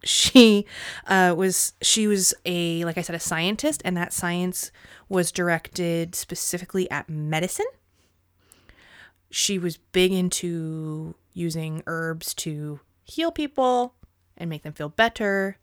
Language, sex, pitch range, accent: English, female, 165-215 Hz, American